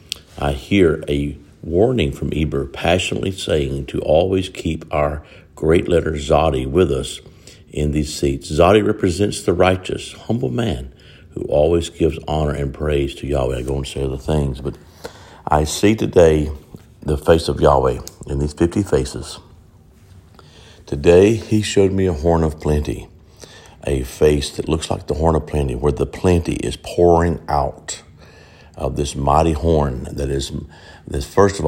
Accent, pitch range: American, 70-85 Hz